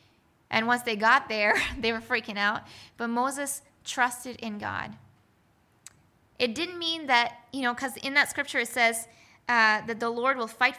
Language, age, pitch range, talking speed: English, 10-29, 215-270 Hz, 180 wpm